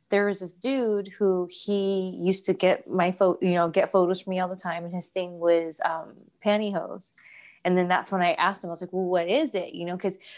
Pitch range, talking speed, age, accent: 180-210 Hz, 250 wpm, 20-39, American